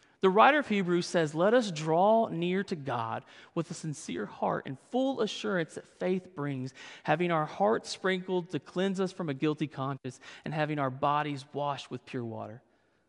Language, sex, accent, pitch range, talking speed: English, male, American, 145-205 Hz, 185 wpm